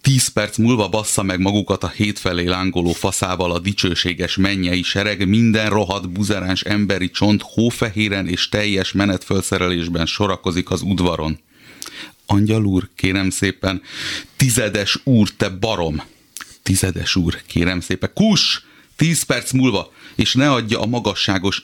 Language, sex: Hungarian, male